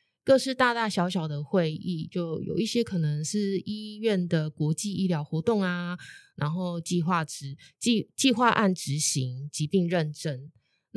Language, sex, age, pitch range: Chinese, female, 20-39, 160-210 Hz